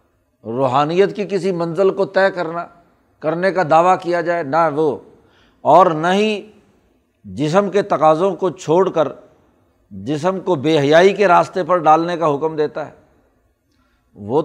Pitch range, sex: 125-190 Hz, male